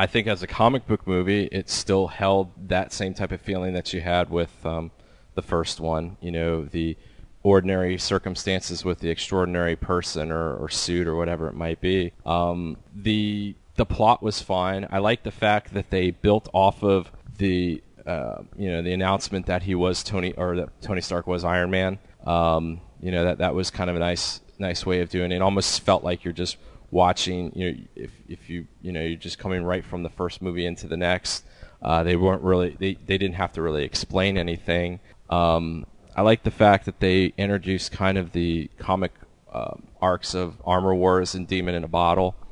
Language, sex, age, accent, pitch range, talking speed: English, male, 30-49, American, 85-95 Hz, 205 wpm